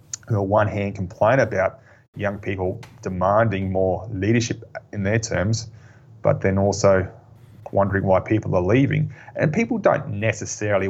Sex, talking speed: male, 145 wpm